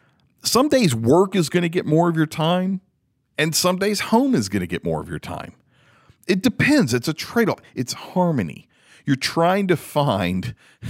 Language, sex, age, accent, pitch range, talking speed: English, male, 40-59, American, 110-170 Hz, 185 wpm